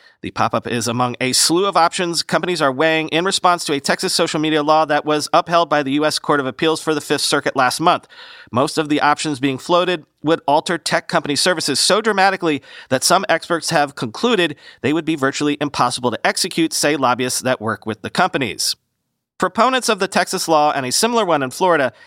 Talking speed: 210 wpm